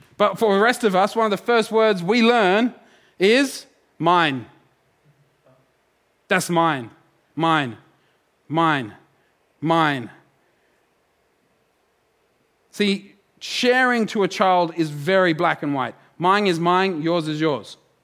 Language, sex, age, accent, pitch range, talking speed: English, male, 30-49, Australian, 170-215 Hz, 120 wpm